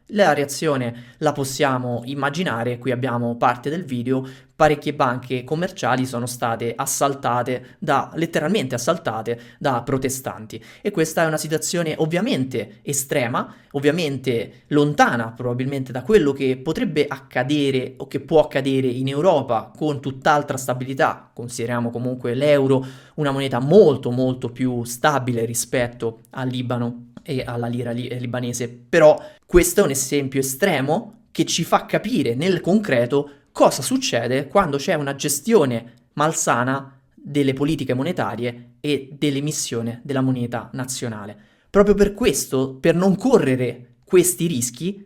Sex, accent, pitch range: male, native, 125-160 Hz